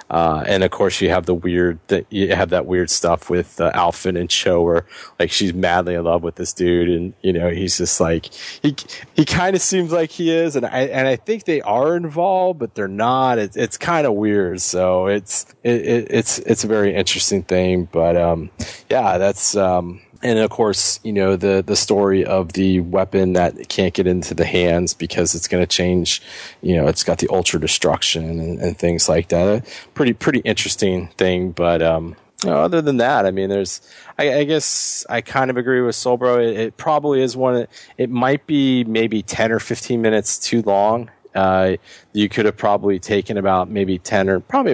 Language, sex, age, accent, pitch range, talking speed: English, male, 30-49, American, 90-120 Hz, 205 wpm